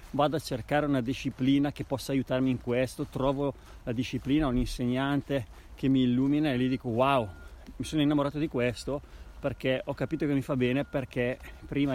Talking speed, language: 180 wpm, Italian